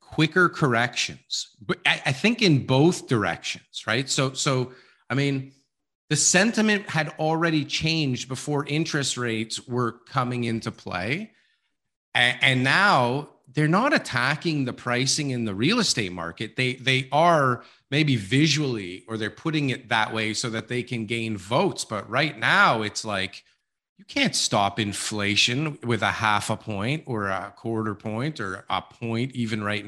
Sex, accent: male, American